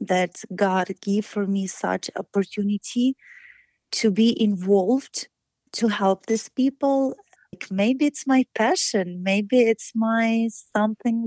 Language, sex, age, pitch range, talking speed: English, female, 30-49, 195-235 Hz, 120 wpm